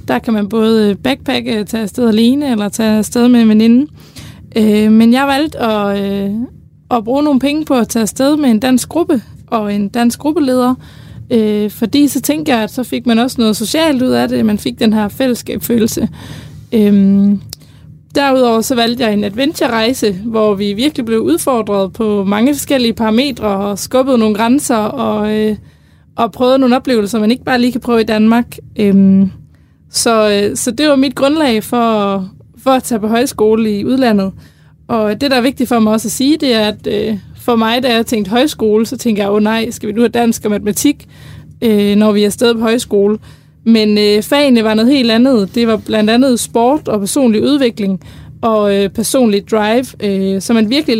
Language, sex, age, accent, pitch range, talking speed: Danish, female, 20-39, native, 210-255 Hz, 200 wpm